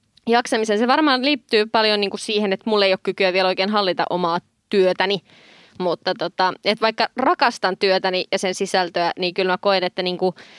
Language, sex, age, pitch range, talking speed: Finnish, female, 20-39, 190-220 Hz, 195 wpm